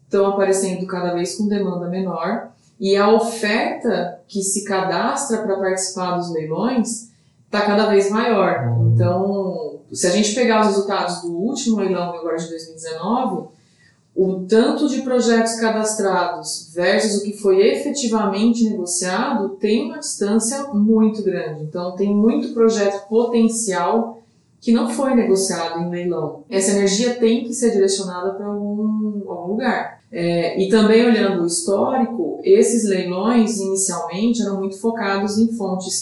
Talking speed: 140 wpm